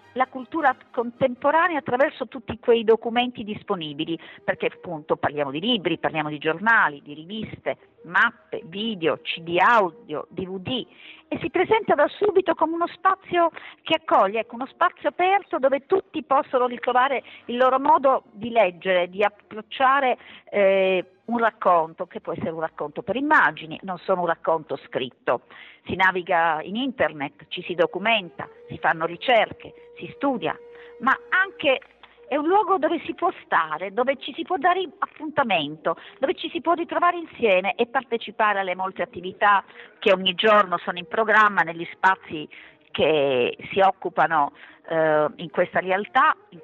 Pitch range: 180-280 Hz